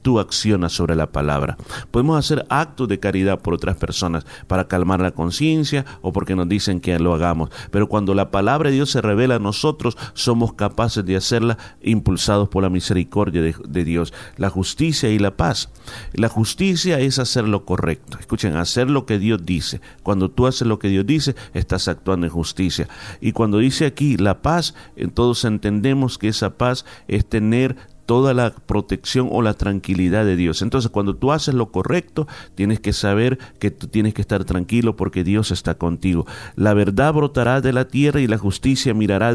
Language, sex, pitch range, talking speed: Spanish, male, 95-125 Hz, 190 wpm